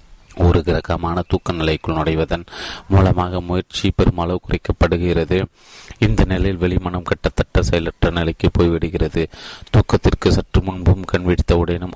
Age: 30-49